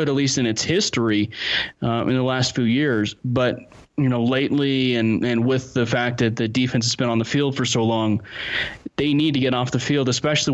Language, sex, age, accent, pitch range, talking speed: English, male, 20-39, American, 120-135 Hz, 220 wpm